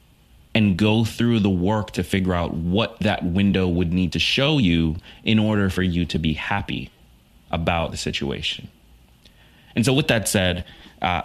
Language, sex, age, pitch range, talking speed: English, male, 30-49, 85-105 Hz, 170 wpm